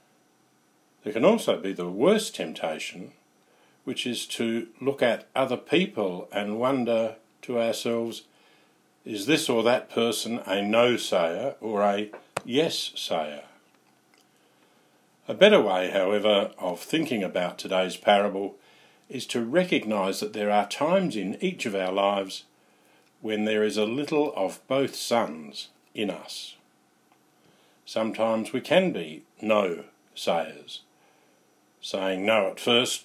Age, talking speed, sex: 50-69, 125 wpm, male